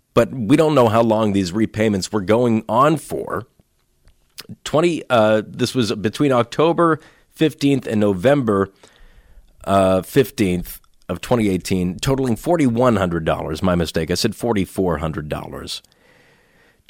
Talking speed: 115 wpm